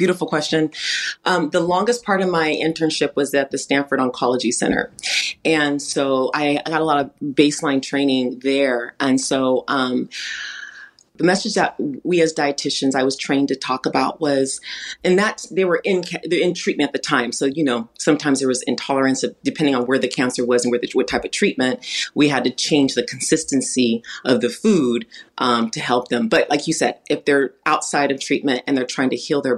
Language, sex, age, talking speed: English, female, 30-49, 205 wpm